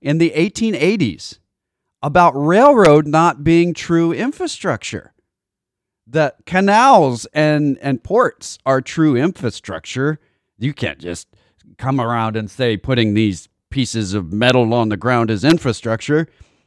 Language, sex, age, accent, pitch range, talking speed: English, male, 40-59, American, 105-150 Hz, 120 wpm